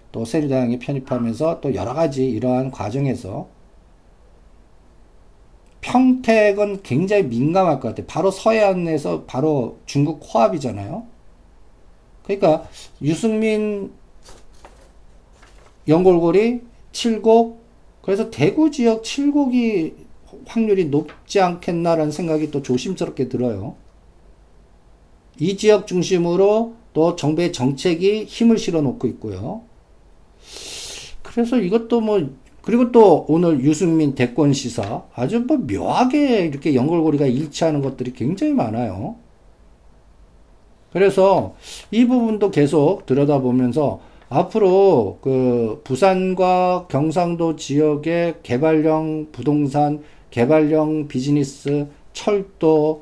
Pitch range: 130-195 Hz